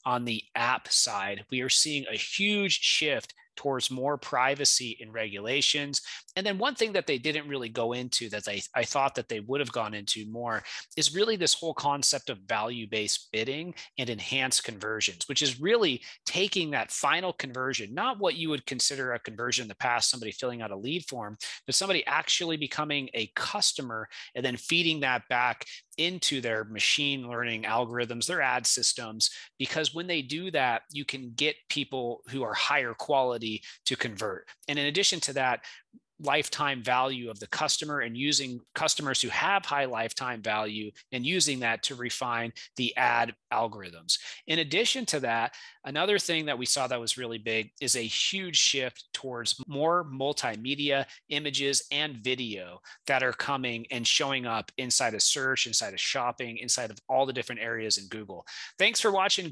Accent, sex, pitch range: American, male, 120-150 Hz